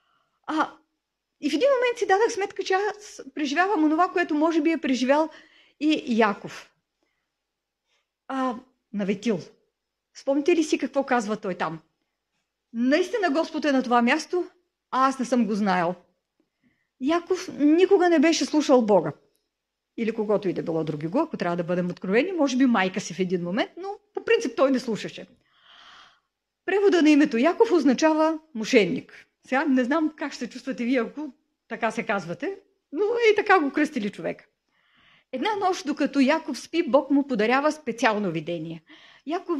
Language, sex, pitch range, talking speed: Bulgarian, female, 220-320 Hz, 160 wpm